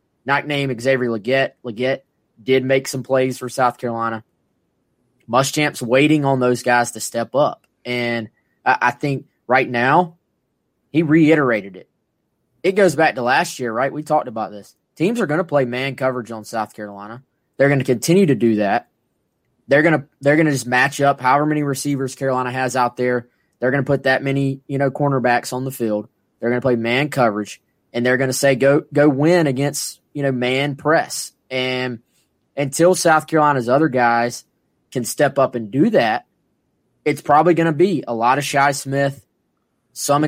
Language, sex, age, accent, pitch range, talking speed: English, male, 20-39, American, 120-145 Hz, 185 wpm